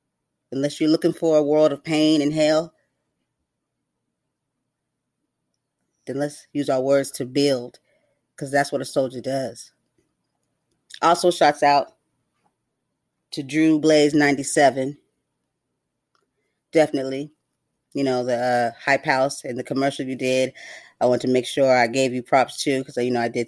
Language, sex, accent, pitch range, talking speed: English, female, American, 130-155 Hz, 145 wpm